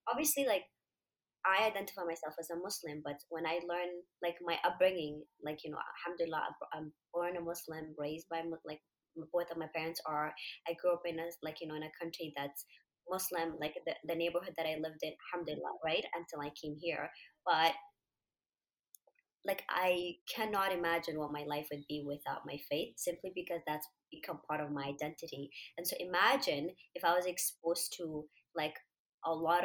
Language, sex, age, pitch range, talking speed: English, male, 20-39, 155-185 Hz, 180 wpm